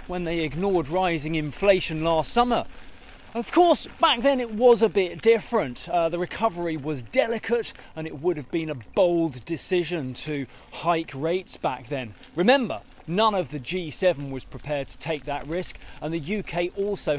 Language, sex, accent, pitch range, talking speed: English, male, British, 160-220 Hz, 170 wpm